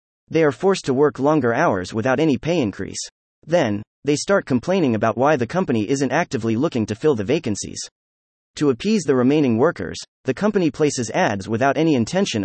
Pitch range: 105-155 Hz